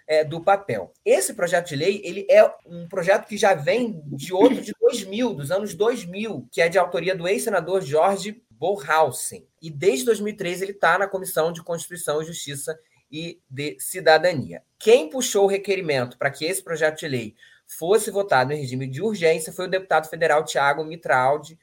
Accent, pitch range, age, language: Brazilian, 150-205 Hz, 20-39, Portuguese